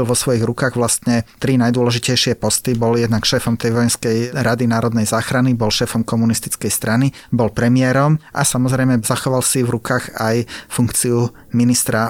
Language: Slovak